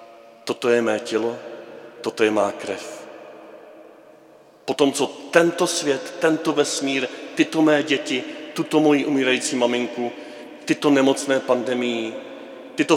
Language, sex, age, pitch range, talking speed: Czech, male, 40-59, 115-150 Hz, 115 wpm